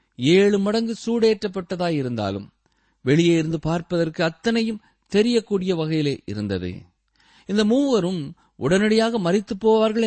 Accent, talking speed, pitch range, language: native, 90 wpm, 135-205 Hz, Tamil